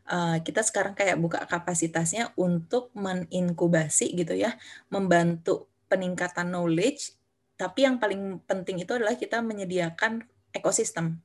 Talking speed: 115 wpm